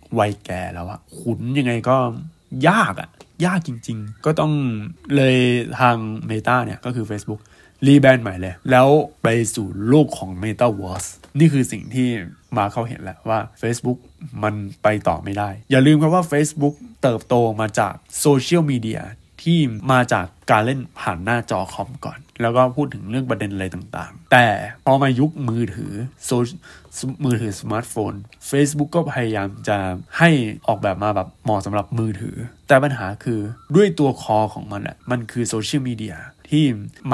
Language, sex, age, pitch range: Thai, male, 20-39, 105-140 Hz